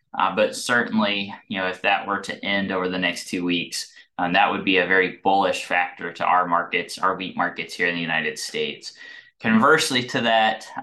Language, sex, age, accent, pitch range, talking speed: English, male, 20-39, American, 90-110 Hz, 205 wpm